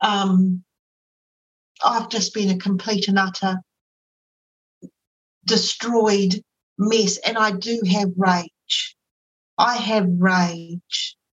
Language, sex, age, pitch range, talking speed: English, female, 50-69, 195-255 Hz, 95 wpm